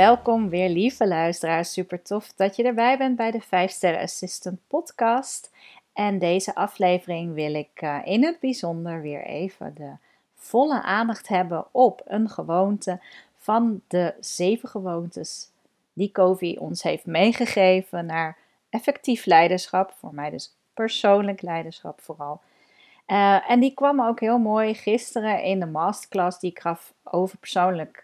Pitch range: 175-230 Hz